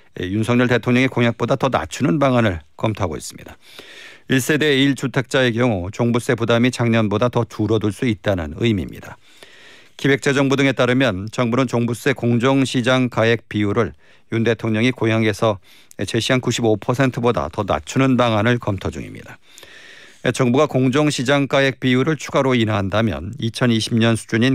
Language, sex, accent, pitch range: Korean, male, native, 110-130 Hz